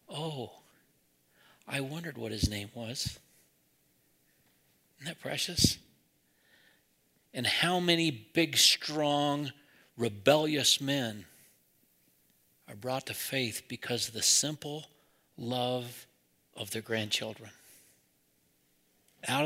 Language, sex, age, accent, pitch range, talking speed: English, male, 60-79, American, 110-145 Hz, 95 wpm